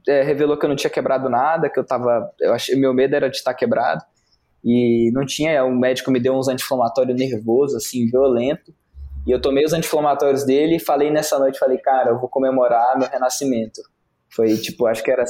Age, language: 20-39, Portuguese